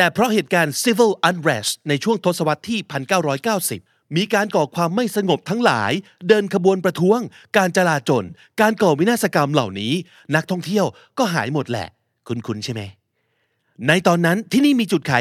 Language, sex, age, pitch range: Thai, male, 30-49, 145-210 Hz